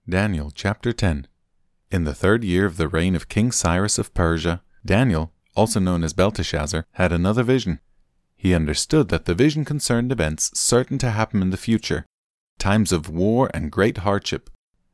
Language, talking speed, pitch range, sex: English, 170 wpm, 85-115 Hz, male